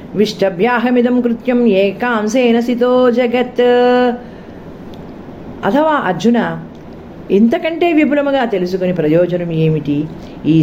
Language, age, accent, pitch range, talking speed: Telugu, 40-59, native, 155-235 Hz, 70 wpm